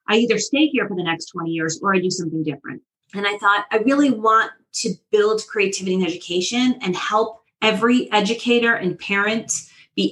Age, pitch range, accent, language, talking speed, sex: 30-49, 180-215 Hz, American, English, 190 wpm, female